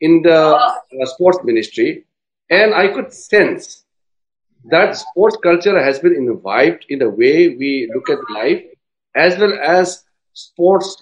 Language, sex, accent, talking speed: English, male, Indian, 140 wpm